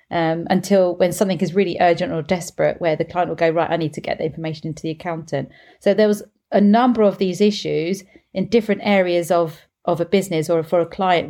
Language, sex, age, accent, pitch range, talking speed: English, female, 40-59, British, 165-195 Hz, 230 wpm